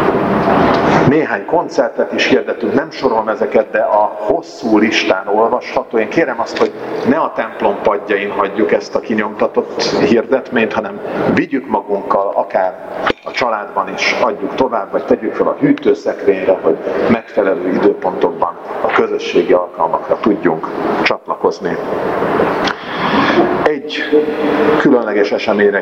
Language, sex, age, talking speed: Hungarian, male, 50-69, 115 wpm